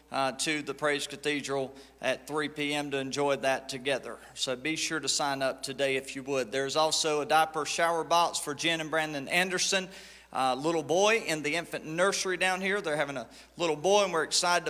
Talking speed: 205 wpm